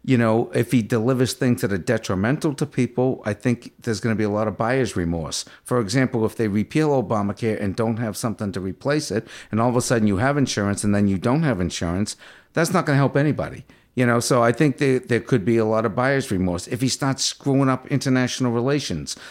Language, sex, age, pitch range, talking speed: English, male, 50-69, 110-135 Hz, 235 wpm